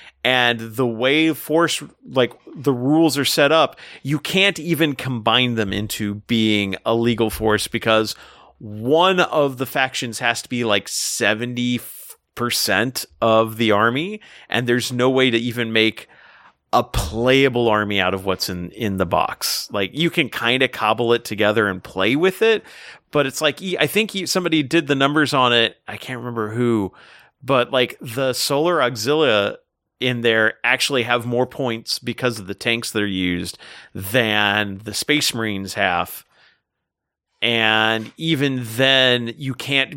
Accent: American